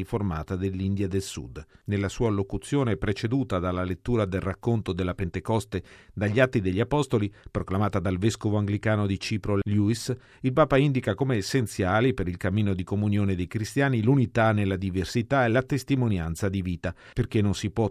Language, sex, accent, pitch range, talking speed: Italian, male, native, 95-120 Hz, 165 wpm